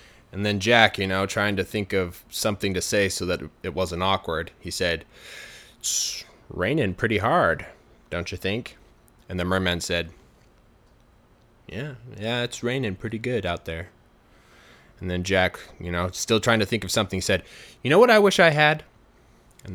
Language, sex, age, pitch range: Chinese, male, 20-39, 95-140 Hz